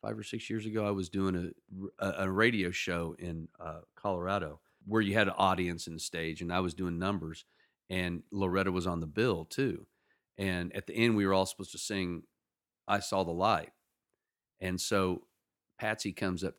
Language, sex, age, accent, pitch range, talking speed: English, male, 40-59, American, 85-100 Hz, 200 wpm